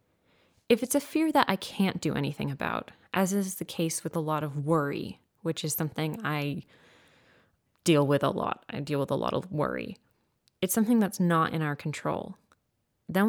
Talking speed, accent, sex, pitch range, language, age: 190 wpm, American, female, 145-190 Hz, English, 20-39